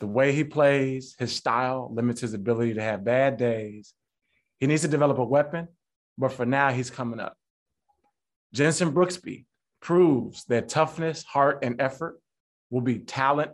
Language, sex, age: English, male, 30-49